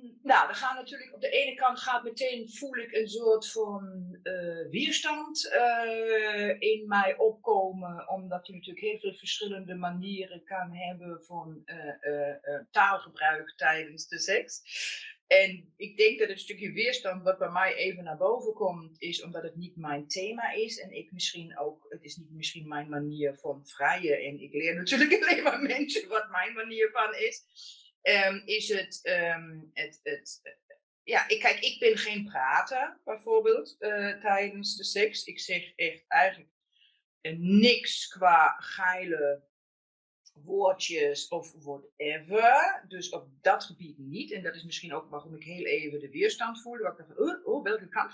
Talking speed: 170 wpm